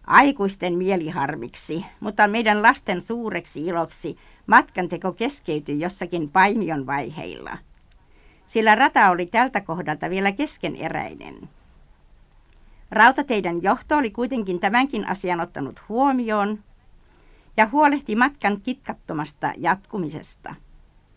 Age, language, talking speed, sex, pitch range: 60-79, Finnish, 90 wpm, female, 165-225 Hz